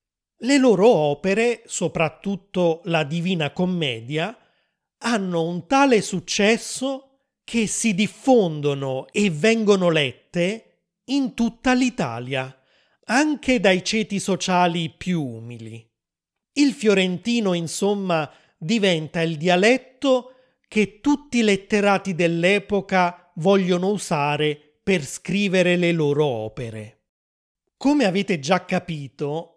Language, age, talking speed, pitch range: Italian, 30-49, 95 wpm, 160-215 Hz